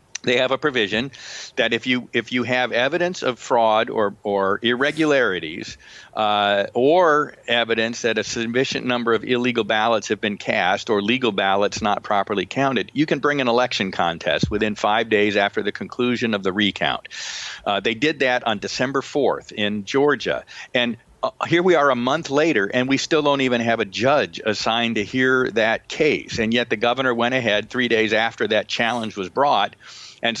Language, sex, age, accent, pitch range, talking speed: English, male, 50-69, American, 115-140 Hz, 185 wpm